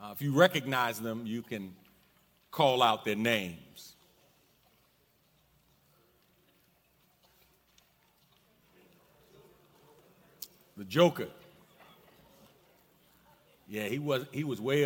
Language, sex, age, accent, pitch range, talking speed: English, male, 40-59, American, 115-160 Hz, 75 wpm